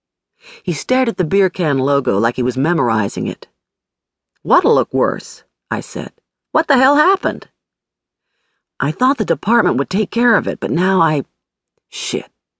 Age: 50-69